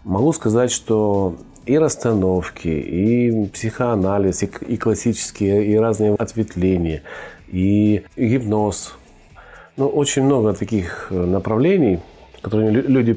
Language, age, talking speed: Russian, 40-59, 105 wpm